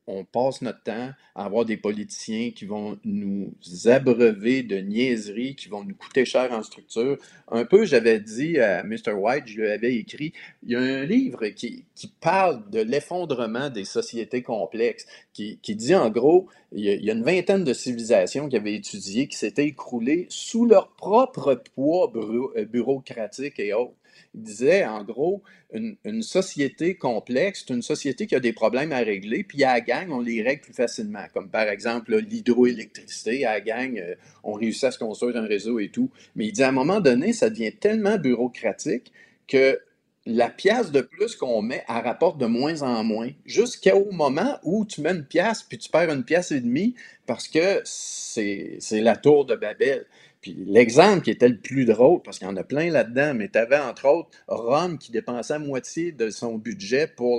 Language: French